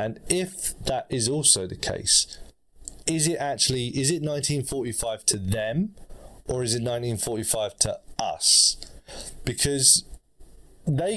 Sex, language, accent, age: male, English, British, 20-39